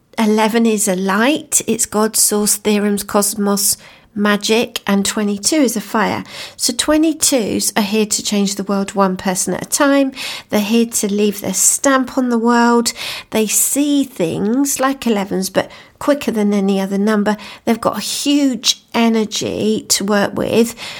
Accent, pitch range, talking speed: British, 200-245 Hz, 160 wpm